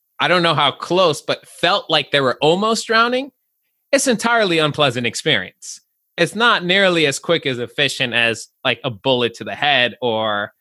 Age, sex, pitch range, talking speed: 20-39, male, 120-170 Hz, 180 wpm